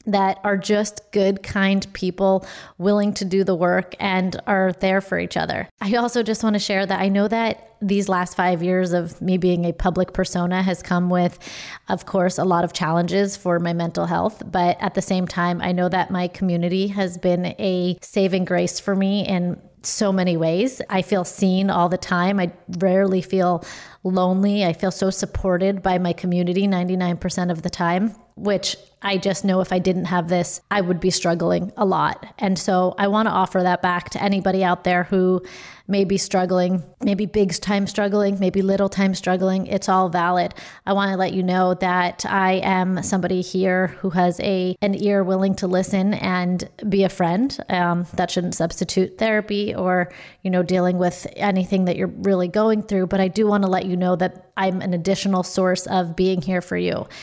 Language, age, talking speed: English, 30-49, 200 wpm